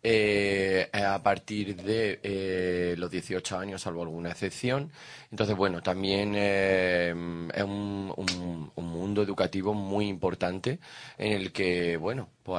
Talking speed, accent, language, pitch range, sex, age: 135 wpm, Spanish, Spanish, 95-115 Hz, male, 20-39